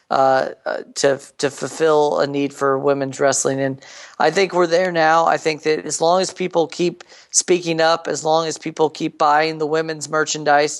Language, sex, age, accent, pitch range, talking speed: English, male, 40-59, American, 140-155 Hz, 190 wpm